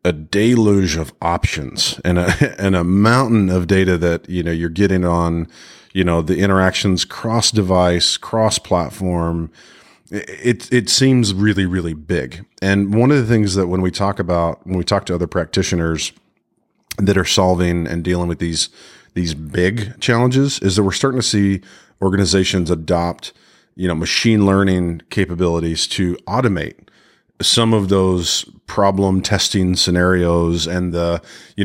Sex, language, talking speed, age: male, English, 155 wpm, 40-59